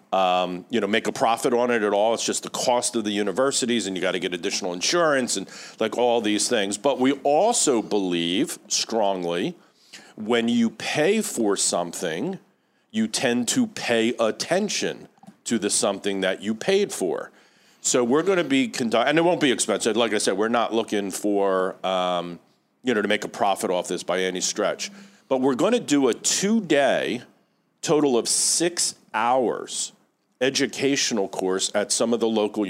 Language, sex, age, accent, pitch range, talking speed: English, male, 50-69, American, 95-125 Hz, 180 wpm